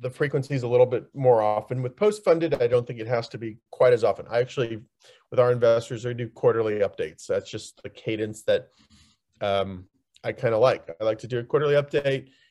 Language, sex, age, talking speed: English, male, 40-59, 215 wpm